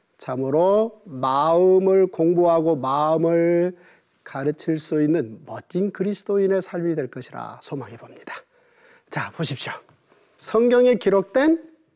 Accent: native